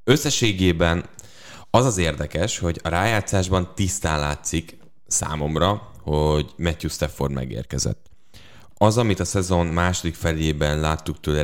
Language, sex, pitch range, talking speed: English, male, 75-95 Hz, 115 wpm